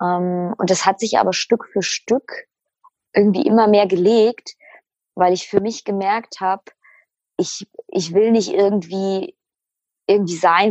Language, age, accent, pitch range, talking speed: German, 20-39, German, 175-220 Hz, 145 wpm